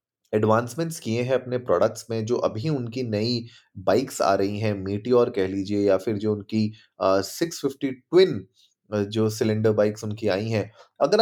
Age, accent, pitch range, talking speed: 30-49, native, 105-140 Hz, 170 wpm